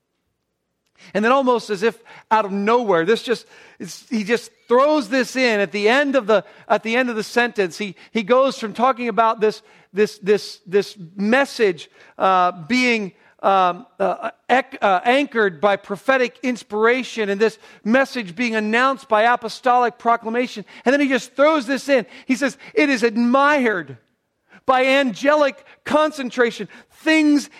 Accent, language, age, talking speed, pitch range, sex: American, English, 40-59, 150 wpm, 225-290 Hz, male